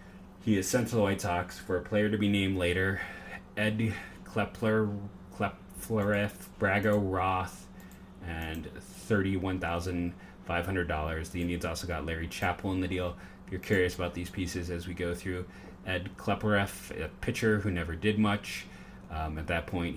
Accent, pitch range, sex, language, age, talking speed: American, 85-100 Hz, male, English, 30-49, 150 wpm